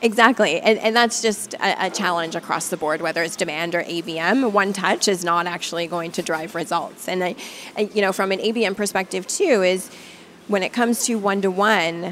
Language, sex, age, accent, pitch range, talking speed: English, female, 30-49, American, 170-200 Hz, 205 wpm